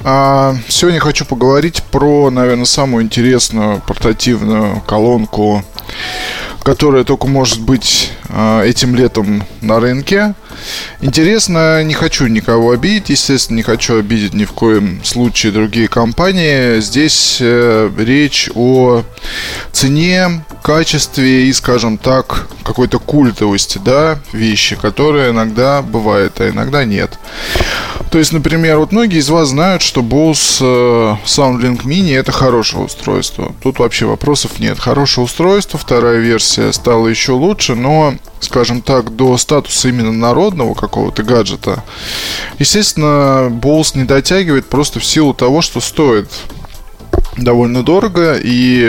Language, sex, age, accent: Russian, male, 20-39, native